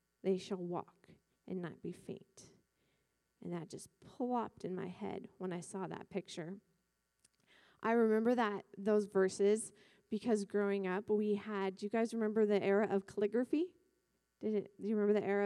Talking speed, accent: 165 wpm, American